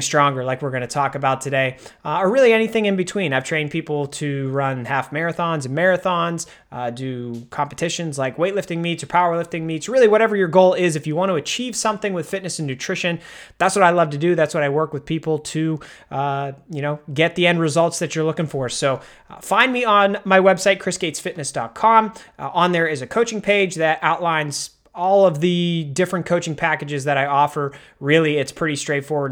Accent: American